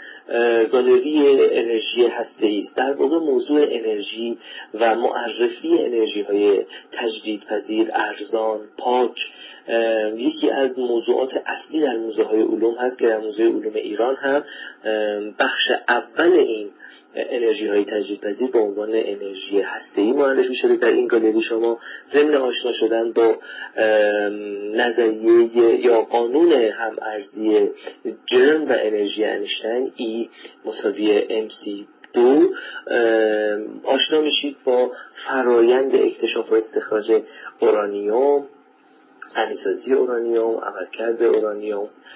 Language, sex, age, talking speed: Persian, male, 30-49, 110 wpm